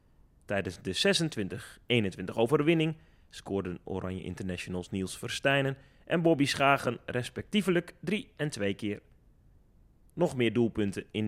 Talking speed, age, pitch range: 105 wpm, 30-49, 95-140 Hz